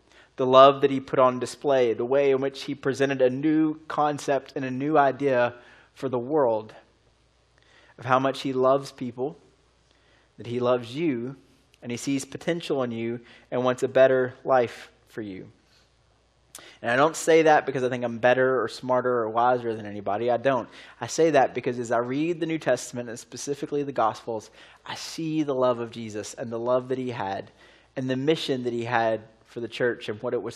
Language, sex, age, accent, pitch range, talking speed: English, male, 20-39, American, 120-140 Hz, 200 wpm